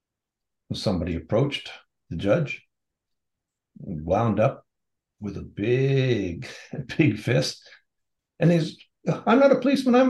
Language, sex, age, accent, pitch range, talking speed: English, male, 60-79, American, 105-130 Hz, 105 wpm